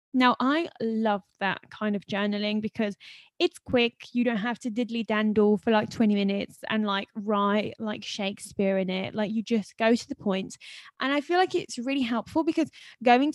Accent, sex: British, female